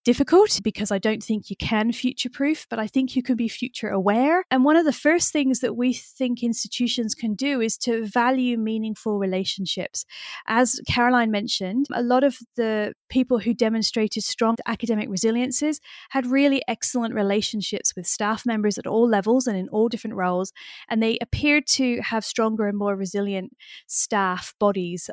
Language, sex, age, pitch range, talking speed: English, female, 30-49, 205-245 Hz, 170 wpm